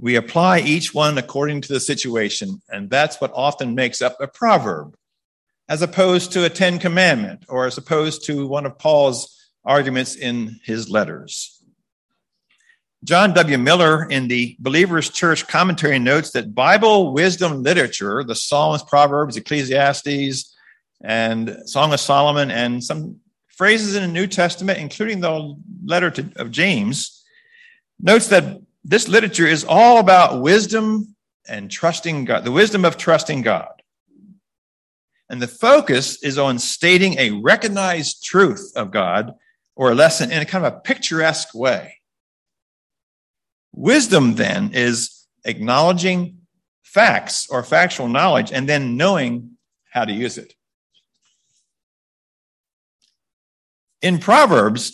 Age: 50-69